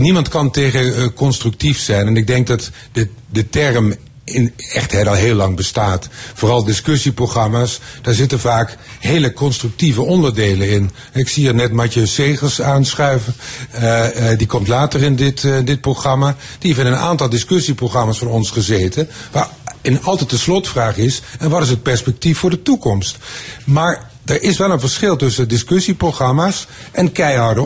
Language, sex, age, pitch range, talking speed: Dutch, male, 50-69, 115-145 Hz, 165 wpm